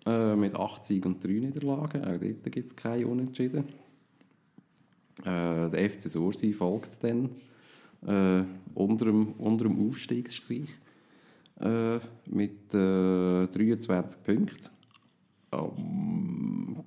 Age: 40-59